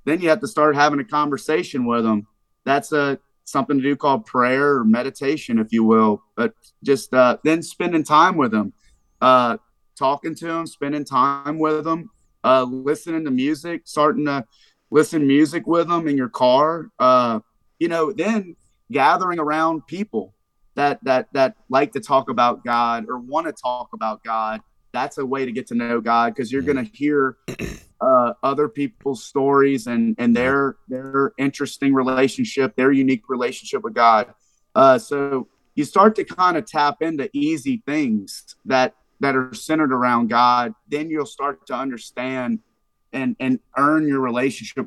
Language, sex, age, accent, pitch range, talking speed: English, male, 30-49, American, 125-155 Hz, 170 wpm